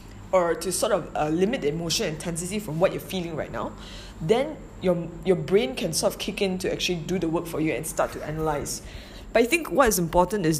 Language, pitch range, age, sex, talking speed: English, 160-200 Hz, 20-39, female, 240 wpm